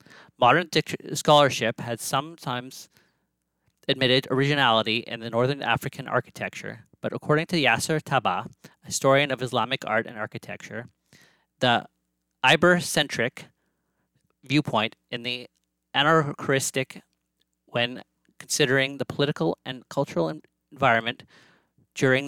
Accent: American